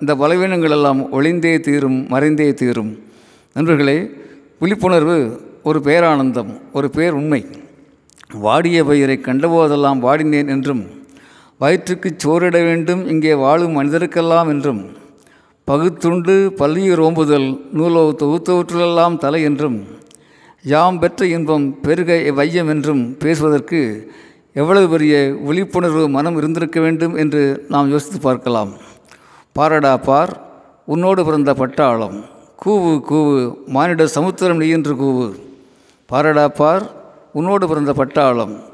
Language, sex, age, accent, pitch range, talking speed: Tamil, male, 50-69, native, 140-170 Hz, 100 wpm